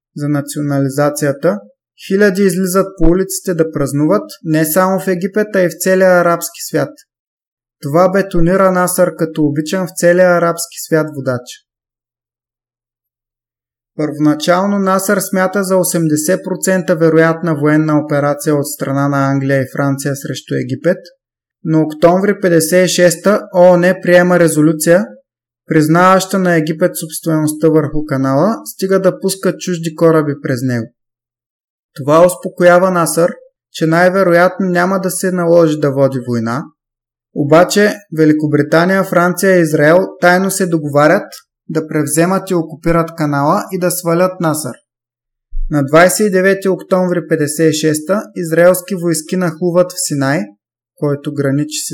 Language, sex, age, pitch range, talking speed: Bulgarian, male, 20-39, 145-185 Hz, 120 wpm